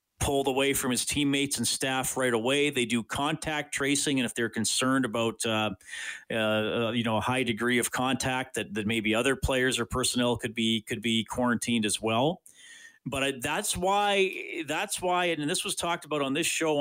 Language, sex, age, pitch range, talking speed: English, male, 40-59, 120-150 Hz, 195 wpm